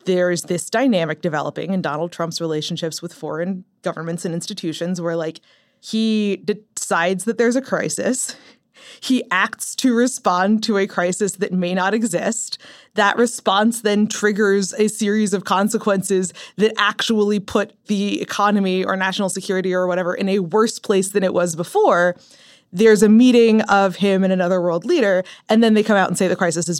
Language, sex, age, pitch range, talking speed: English, female, 20-39, 175-215 Hz, 175 wpm